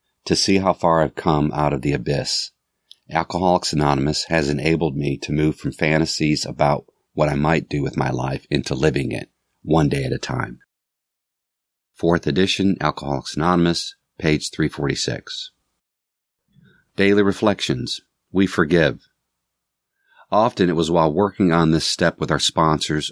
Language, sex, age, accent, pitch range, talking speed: English, male, 50-69, American, 75-90 Hz, 145 wpm